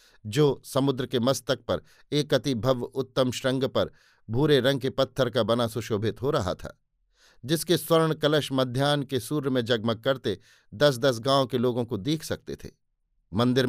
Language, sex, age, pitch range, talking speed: Hindi, male, 50-69, 120-140 Hz, 170 wpm